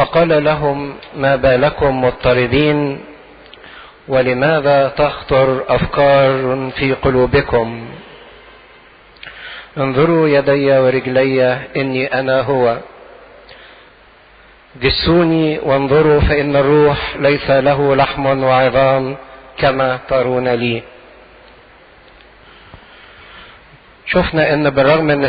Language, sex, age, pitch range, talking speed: English, male, 50-69, 135-150 Hz, 75 wpm